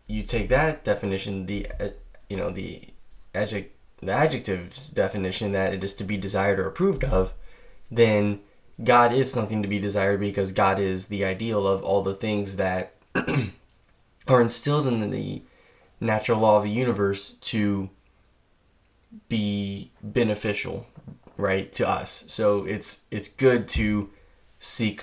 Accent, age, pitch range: American, 10-29, 95-110 Hz